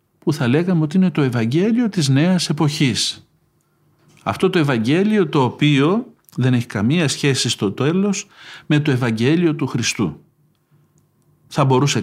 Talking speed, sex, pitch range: 140 wpm, male, 130-165 Hz